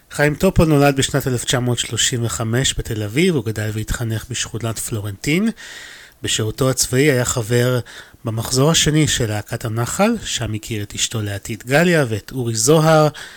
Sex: male